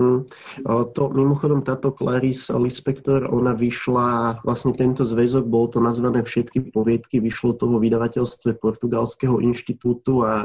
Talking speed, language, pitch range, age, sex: 125 wpm, Slovak, 115-130 Hz, 20-39, male